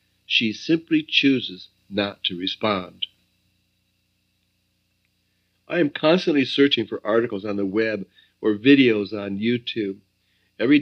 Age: 60-79